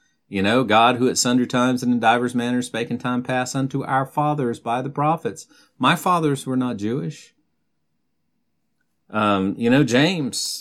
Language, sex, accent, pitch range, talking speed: English, male, American, 95-130 Hz, 170 wpm